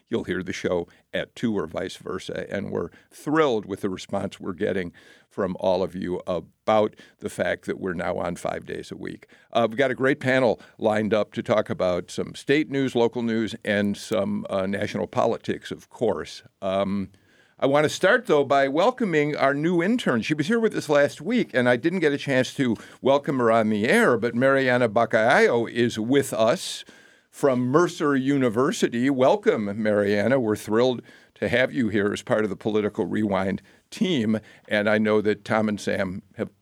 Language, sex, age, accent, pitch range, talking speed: English, male, 50-69, American, 105-140 Hz, 190 wpm